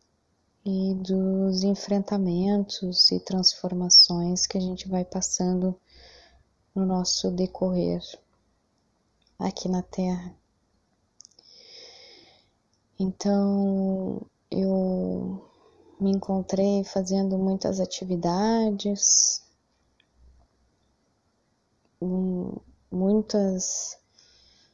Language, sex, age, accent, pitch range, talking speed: Portuguese, female, 20-39, Brazilian, 175-195 Hz, 60 wpm